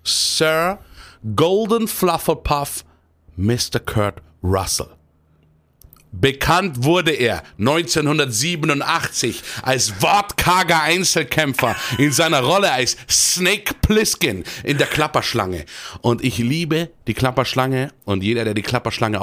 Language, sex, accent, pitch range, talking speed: German, male, German, 100-135 Hz, 100 wpm